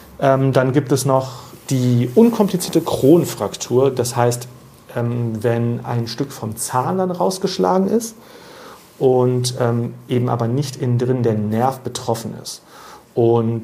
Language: German